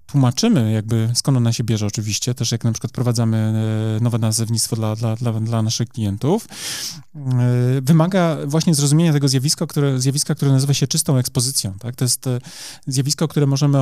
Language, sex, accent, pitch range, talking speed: Polish, male, native, 125-155 Hz, 160 wpm